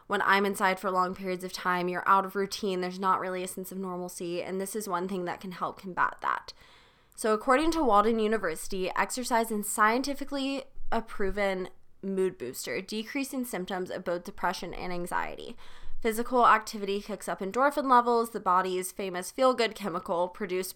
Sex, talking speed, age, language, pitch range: female, 175 wpm, 20-39, English, 185-230 Hz